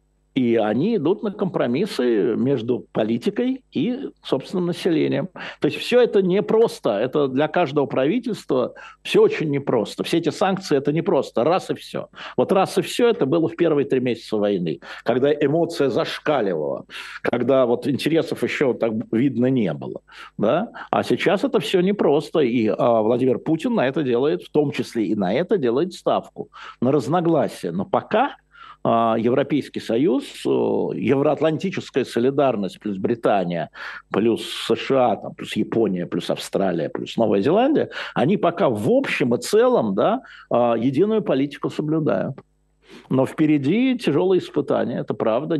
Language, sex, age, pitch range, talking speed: Russian, male, 60-79, 130-200 Hz, 140 wpm